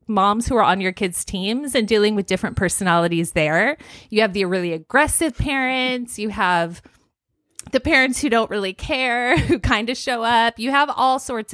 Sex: female